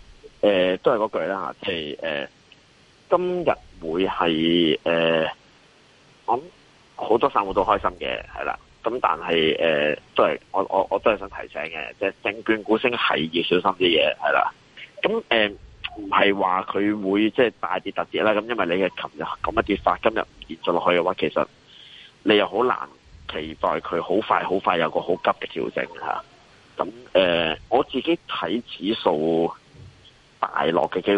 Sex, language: male, Chinese